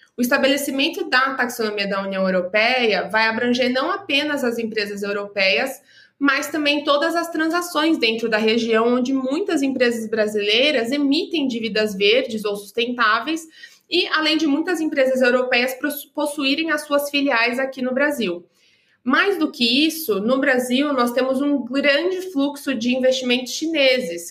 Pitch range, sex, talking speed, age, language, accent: 230-285 Hz, female, 145 wpm, 20-39, English, Brazilian